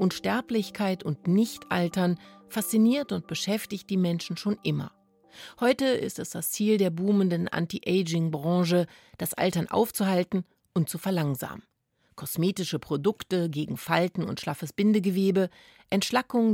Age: 30-49